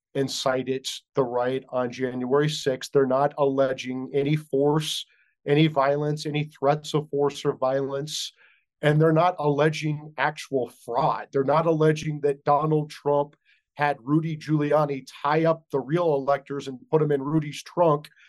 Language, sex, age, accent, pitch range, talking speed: English, male, 40-59, American, 140-160 Hz, 150 wpm